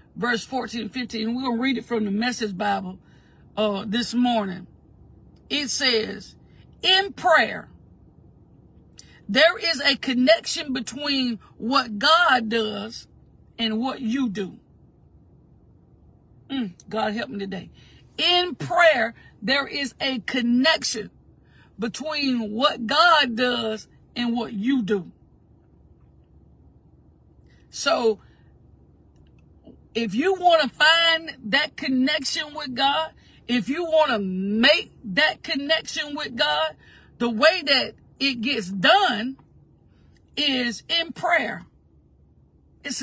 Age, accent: 50-69, American